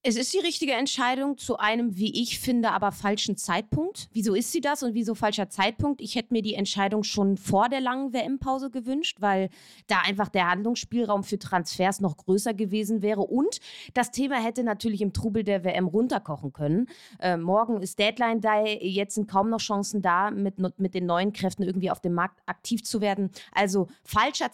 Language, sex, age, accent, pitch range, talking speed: German, female, 20-39, German, 185-235 Hz, 195 wpm